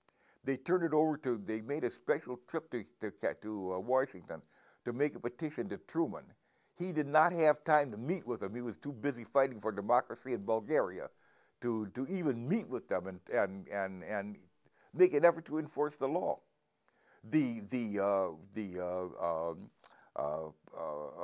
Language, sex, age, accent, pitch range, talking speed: English, male, 60-79, American, 110-180 Hz, 180 wpm